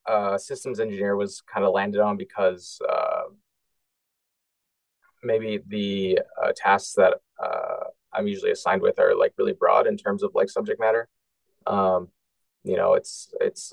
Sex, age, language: male, 20-39, English